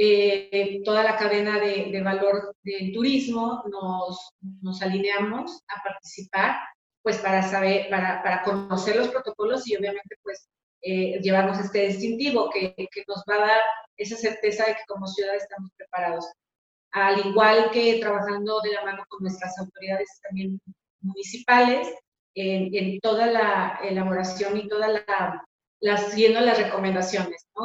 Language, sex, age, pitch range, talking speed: Spanish, female, 30-49, 195-220 Hz, 150 wpm